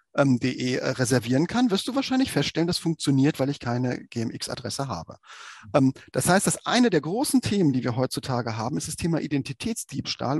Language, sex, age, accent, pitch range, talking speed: German, male, 40-59, German, 125-180 Hz, 180 wpm